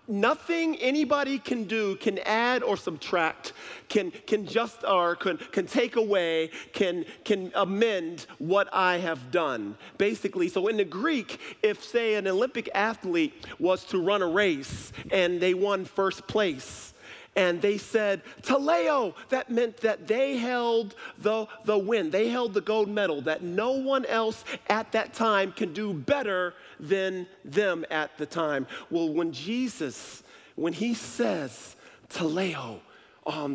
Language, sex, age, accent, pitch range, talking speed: English, male, 50-69, American, 190-285 Hz, 150 wpm